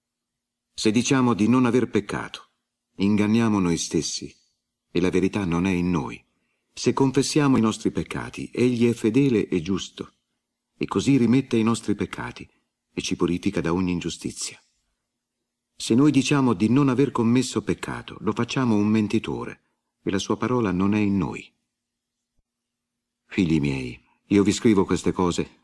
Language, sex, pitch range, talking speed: Italian, male, 95-120 Hz, 150 wpm